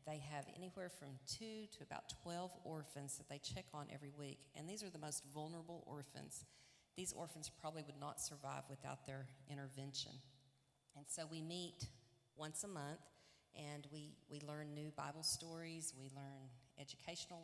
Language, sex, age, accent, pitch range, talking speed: English, female, 40-59, American, 140-155 Hz, 165 wpm